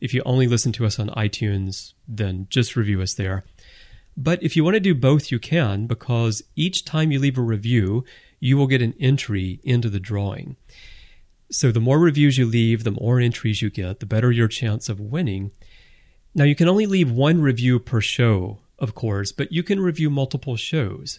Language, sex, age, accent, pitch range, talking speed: English, male, 30-49, American, 105-140 Hz, 200 wpm